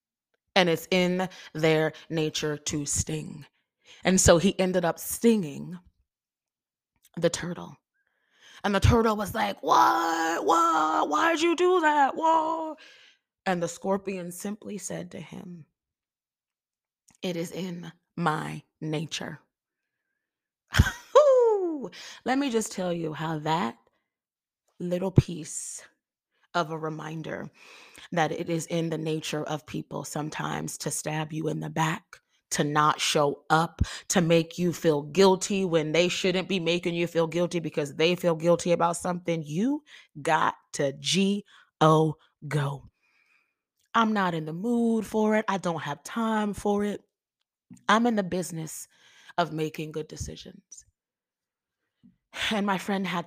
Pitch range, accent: 155-200 Hz, American